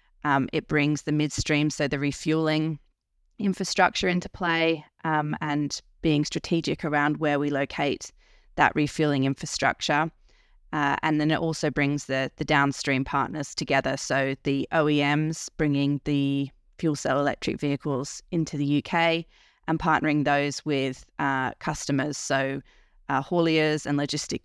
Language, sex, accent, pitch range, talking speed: English, female, Australian, 140-155 Hz, 135 wpm